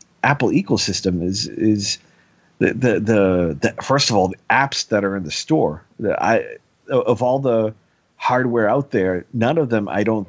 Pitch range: 100-125 Hz